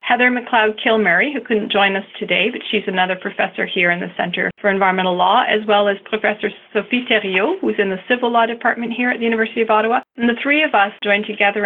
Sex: female